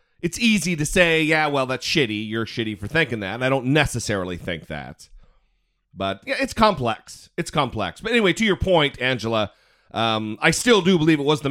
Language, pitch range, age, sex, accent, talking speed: English, 115-170 Hz, 40-59, male, American, 200 wpm